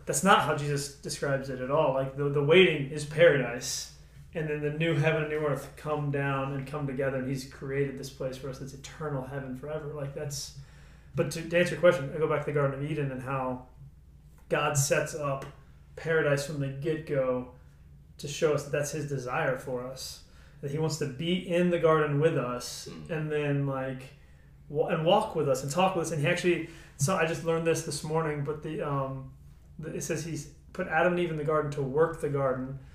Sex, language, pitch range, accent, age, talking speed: male, English, 135-160 Hz, American, 30-49, 220 wpm